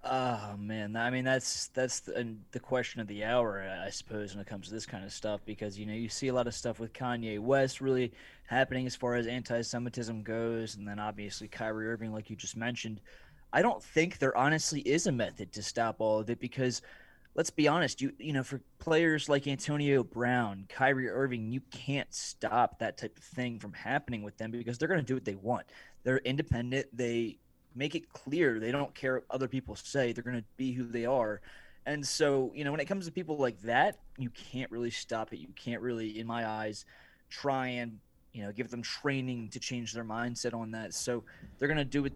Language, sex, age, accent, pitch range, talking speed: English, male, 20-39, American, 110-130 Hz, 225 wpm